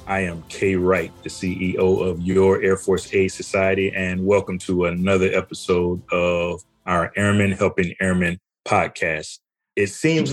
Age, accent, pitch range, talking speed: 30-49, American, 90-115 Hz, 145 wpm